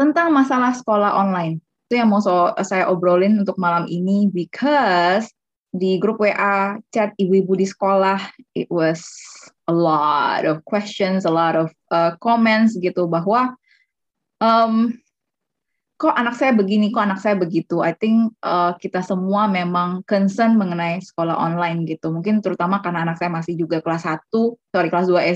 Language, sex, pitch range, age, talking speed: Indonesian, female, 175-230 Hz, 20-39, 155 wpm